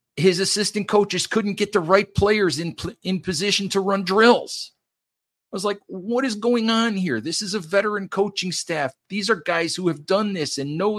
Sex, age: male, 50-69